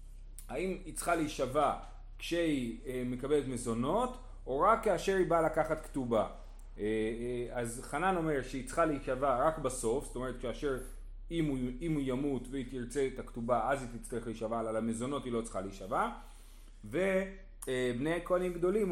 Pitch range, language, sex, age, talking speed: 120-165 Hz, Hebrew, male, 30-49, 145 wpm